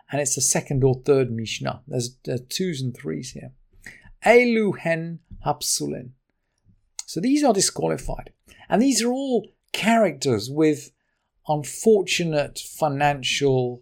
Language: English